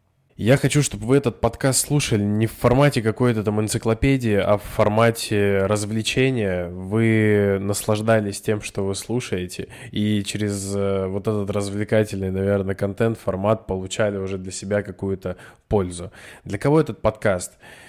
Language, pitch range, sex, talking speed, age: Russian, 100-110 Hz, male, 140 wpm, 20-39